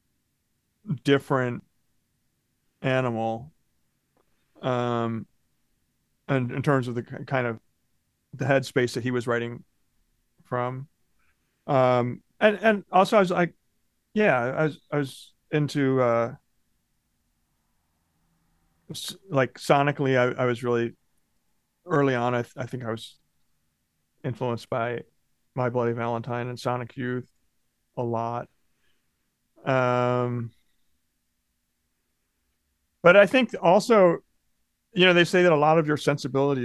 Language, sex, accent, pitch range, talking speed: English, male, American, 115-140 Hz, 115 wpm